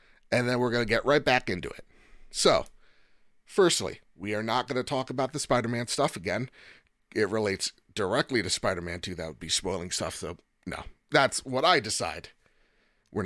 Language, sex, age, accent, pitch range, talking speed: English, male, 30-49, American, 105-145 Hz, 185 wpm